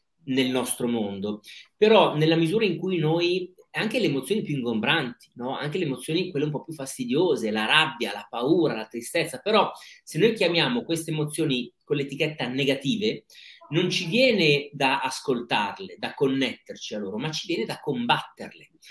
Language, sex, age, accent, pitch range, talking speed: Italian, male, 30-49, native, 125-185 Hz, 165 wpm